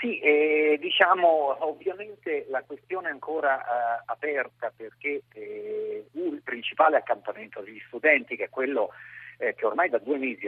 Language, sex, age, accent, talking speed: Italian, male, 50-69, native, 150 wpm